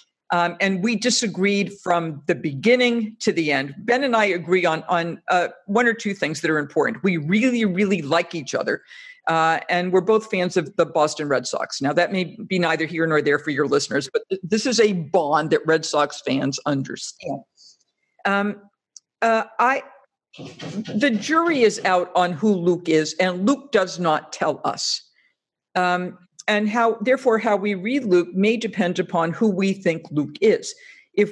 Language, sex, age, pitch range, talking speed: English, female, 50-69, 170-220 Hz, 185 wpm